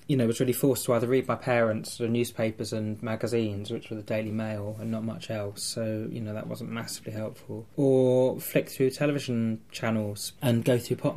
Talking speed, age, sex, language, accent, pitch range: 220 wpm, 20-39, male, English, British, 105-120 Hz